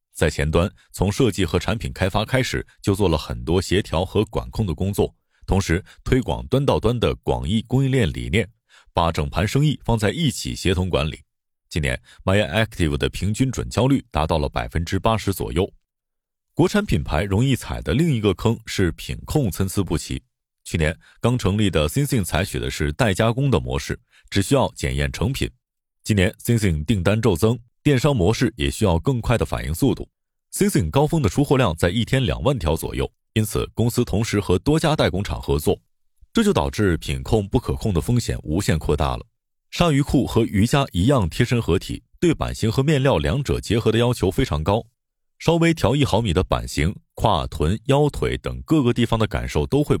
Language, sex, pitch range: Chinese, male, 80-125 Hz